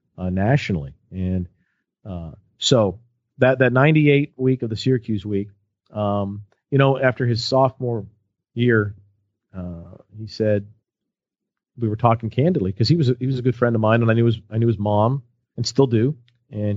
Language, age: English, 40-59